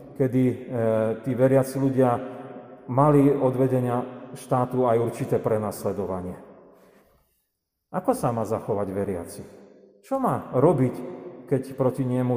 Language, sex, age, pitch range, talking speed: Slovak, male, 40-59, 115-145 Hz, 105 wpm